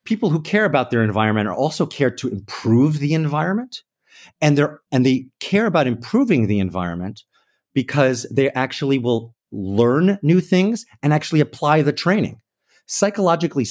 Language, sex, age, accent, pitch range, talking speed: English, male, 30-49, American, 115-150 Hz, 150 wpm